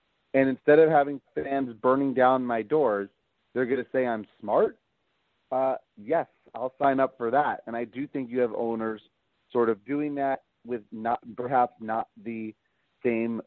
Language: English